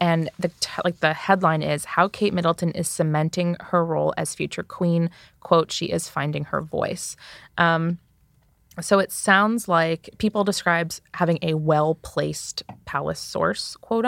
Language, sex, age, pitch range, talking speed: English, female, 20-39, 155-190 Hz, 155 wpm